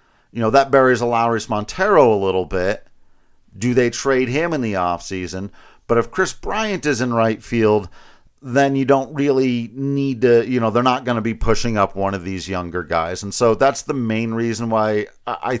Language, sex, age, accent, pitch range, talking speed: English, male, 50-69, American, 110-150 Hz, 200 wpm